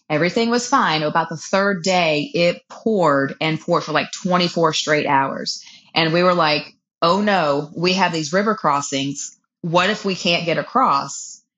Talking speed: 170 wpm